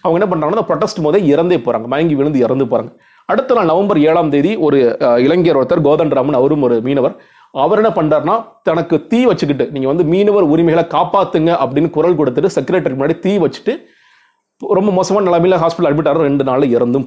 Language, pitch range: Tamil, 145-180 Hz